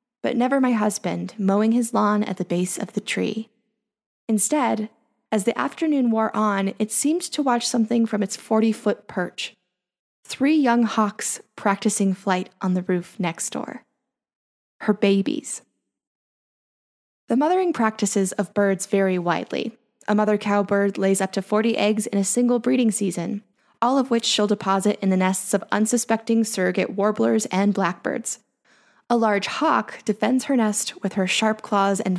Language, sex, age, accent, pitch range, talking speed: English, female, 10-29, American, 195-230 Hz, 160 wpm